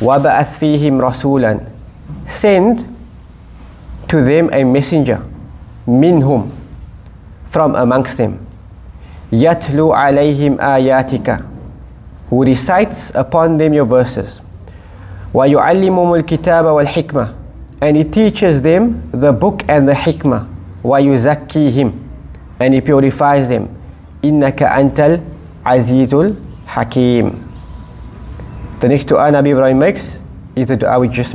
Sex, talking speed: male, 100 wpm